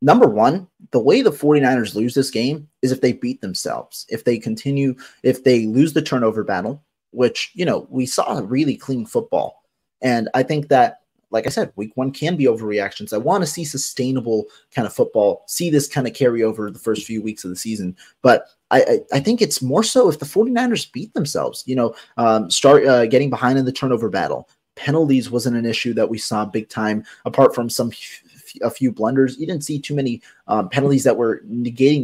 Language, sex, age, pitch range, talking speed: English, male, 30-49, 110-140 Hz, 215 wpm